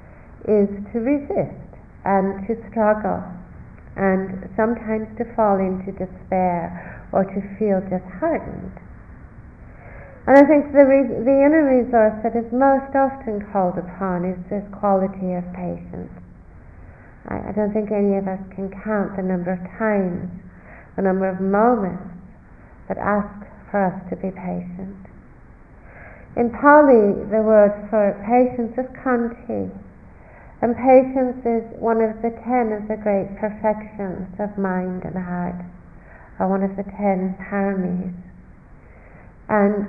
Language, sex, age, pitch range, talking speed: English, female, 60-79, 185-230 Hz, 130 wpm